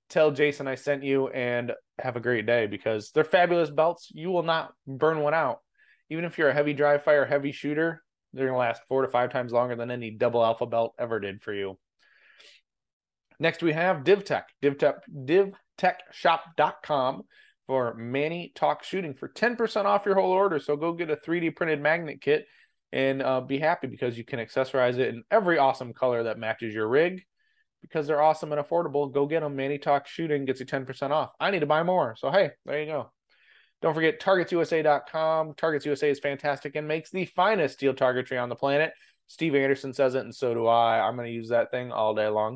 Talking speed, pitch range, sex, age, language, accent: 210 wpm, 125-160 Hz, male, 20-39, English, American